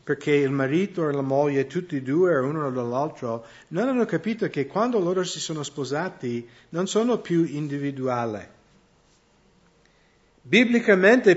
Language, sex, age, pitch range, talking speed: English, male, 50-69, 135-170 Hz, 130 wpm